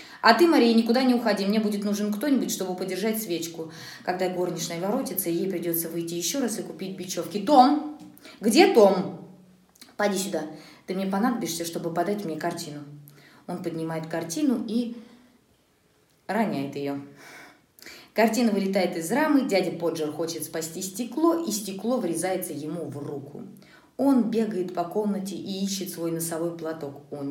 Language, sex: Russian, female